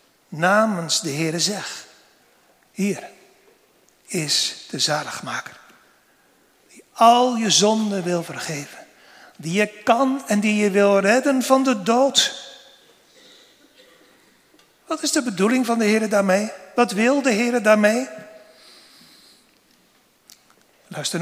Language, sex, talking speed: Dutch, male, 110 wpm